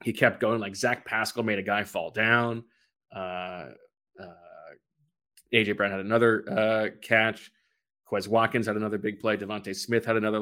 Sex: male